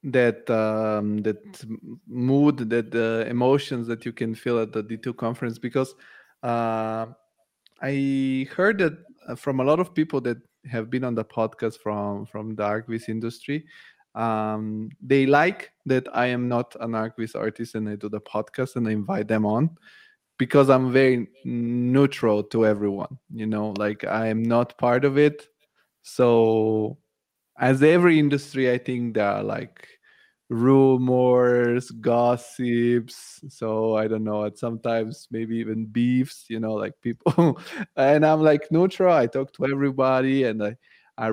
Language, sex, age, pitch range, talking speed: English, male, 20-39, 110-135 Hz, 155 wpm